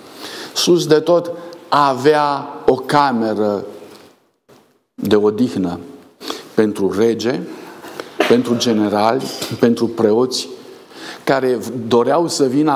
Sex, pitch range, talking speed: male, 140-170 Hz, 85 wpm